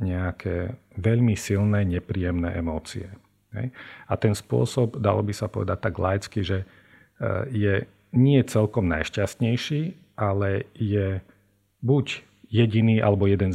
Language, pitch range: Slovak, 90-110 Hz